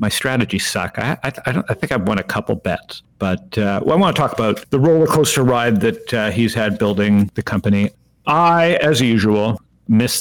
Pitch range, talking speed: 100-130 Hz, 215 wpm